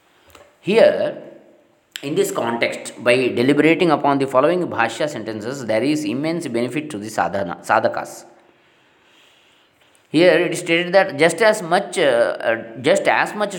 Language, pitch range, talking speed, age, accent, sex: Kannada, 115-175 Hz, 135 wpm, 20-39, native, male